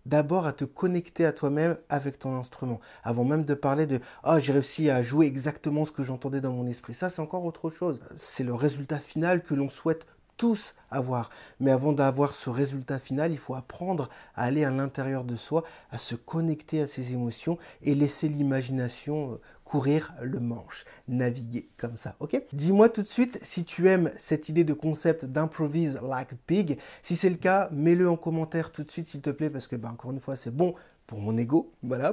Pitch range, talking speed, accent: 135-165 Hz, 205 wpm, French